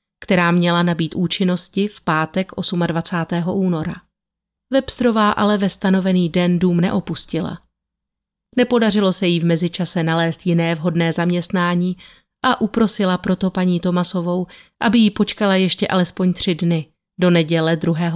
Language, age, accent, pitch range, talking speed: Czech, 30-49, native, 175-200 Hz, 130 wpm